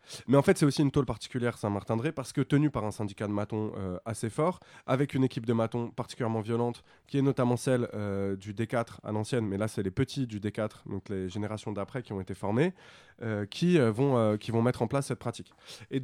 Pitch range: 105-130 Hz